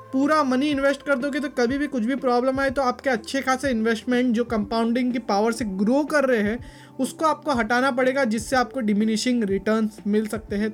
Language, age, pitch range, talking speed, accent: Hindi, 20-39, 220-265 Hz, 205 wpm, native